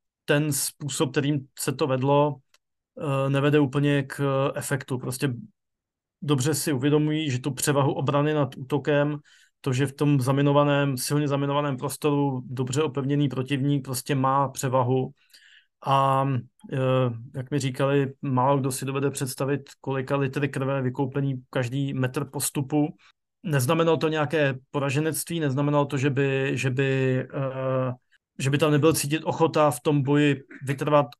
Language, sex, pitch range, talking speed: Slovak, male, 135-150 Hz, 135 wpm